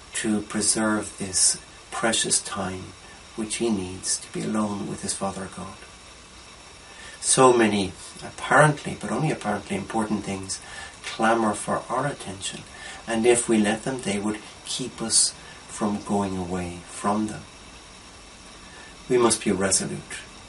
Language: English